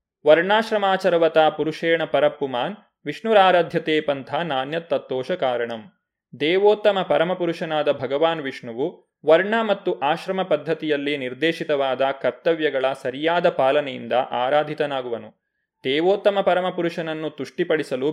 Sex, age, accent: male, 20-39, native